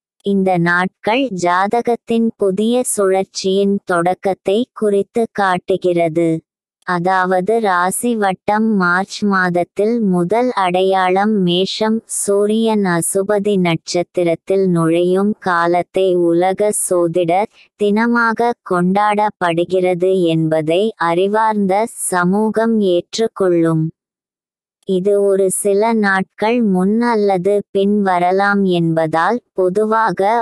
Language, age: Tamil, 20-39